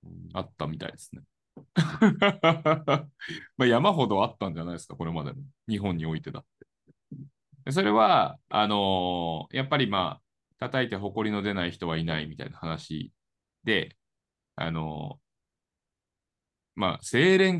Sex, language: male, Japanese